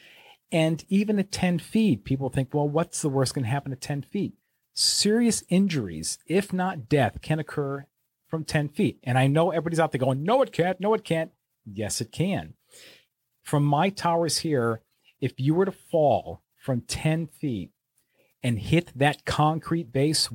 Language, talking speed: English, 175 wpm